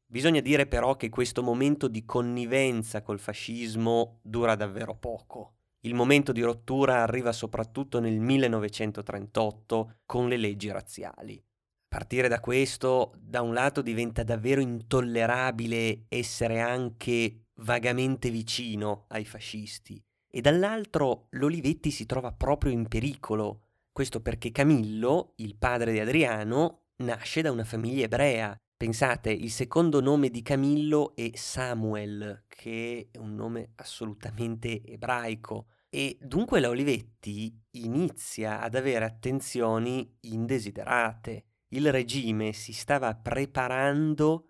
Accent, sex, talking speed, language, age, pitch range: native, male, 120 wpm, Italian, 30-49, 110-130 Hz